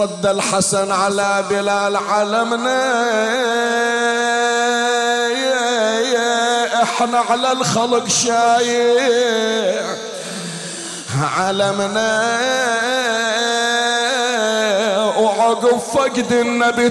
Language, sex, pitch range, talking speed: Arabic, male, 210-240 Hz, 45 wpm